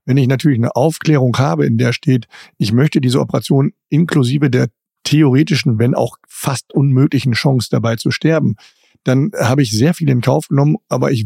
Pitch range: 115-140 Hz